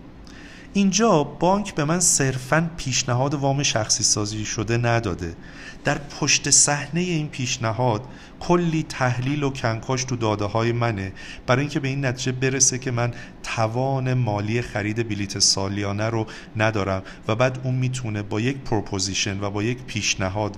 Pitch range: 105-145 Hz